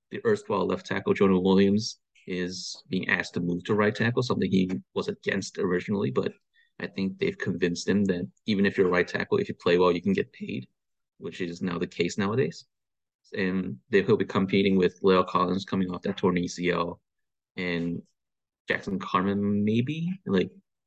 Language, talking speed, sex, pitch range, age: English, 180 wpm, male, 90-110 Hz, 30-49